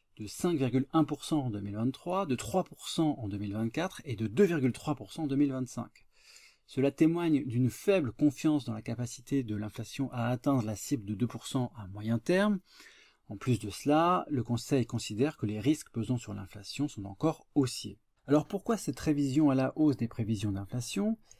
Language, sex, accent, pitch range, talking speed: French, male, French, 115-155 Hz, 165 wpm